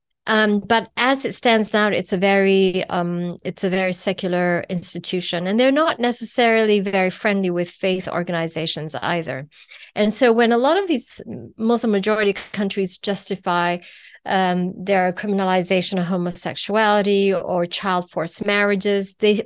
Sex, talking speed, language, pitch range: female, 140 wpm, English, 190-235 Hz